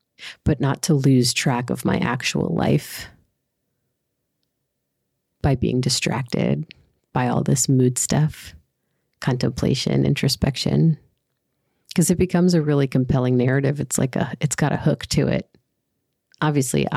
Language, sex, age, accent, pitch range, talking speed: English, female, 30-49, American, 120-160 Hz, 125 wpm